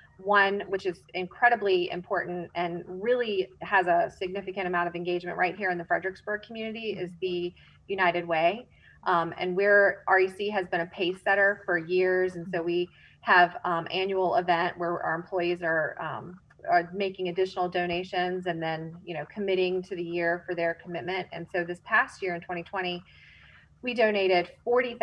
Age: 30-49